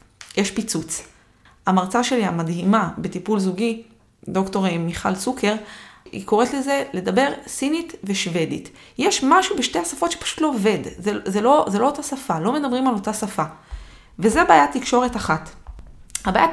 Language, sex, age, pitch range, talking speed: Hebrew, female, 20-39, 195-260 Hz, 145 wpm